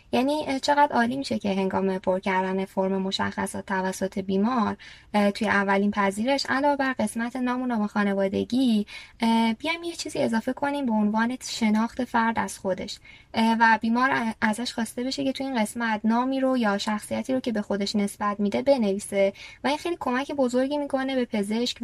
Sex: female